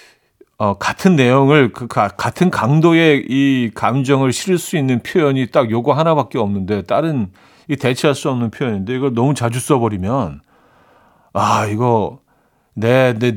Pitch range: 110-150 Hz